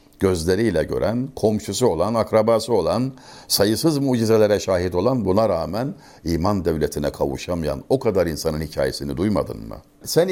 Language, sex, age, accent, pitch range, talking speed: Turkish, male, 60-79, native, 95-125 Hz, 130 wpm